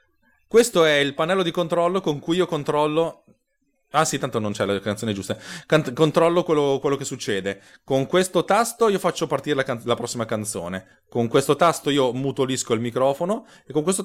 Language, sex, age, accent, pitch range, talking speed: Italian, male, 20-39, native, 115-170 Hz, 190 wpm